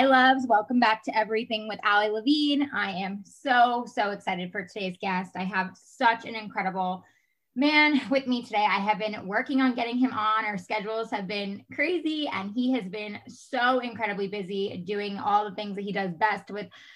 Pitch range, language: 205-260 Hz, English